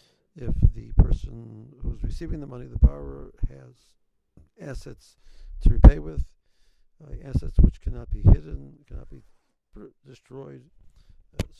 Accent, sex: American, male